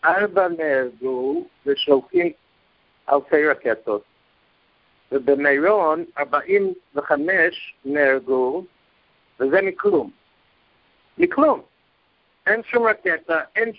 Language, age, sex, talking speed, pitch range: English, 60-79, male, 75 wpm, 140-195 Hz